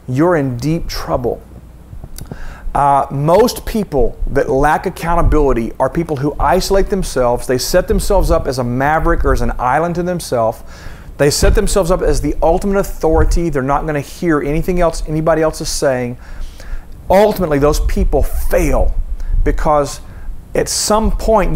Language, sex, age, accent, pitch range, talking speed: English, male, 40-59, American, 125-160 Hz, 150 wpm